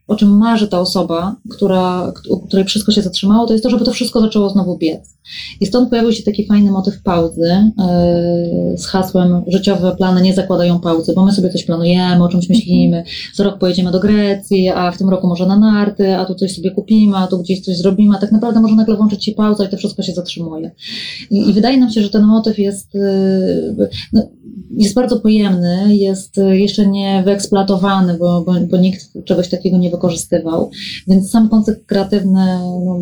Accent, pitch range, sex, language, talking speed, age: native, 180-205 Hz, female, Polish, 200 wpm, 20-39